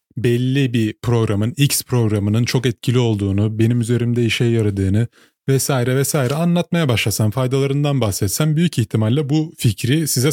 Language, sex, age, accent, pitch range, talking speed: Turkish, male, 30-49, native, 115-150 Hz, 135 wpm